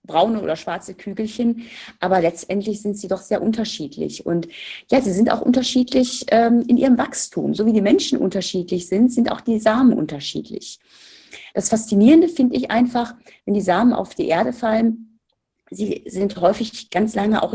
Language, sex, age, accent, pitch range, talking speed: German, female, 40-59, German, 200-255 Hz, 170 wpm